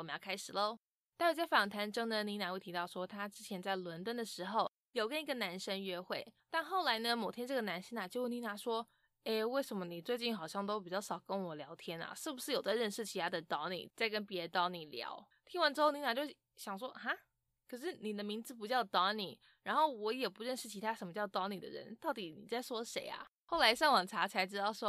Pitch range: 190-255 Hz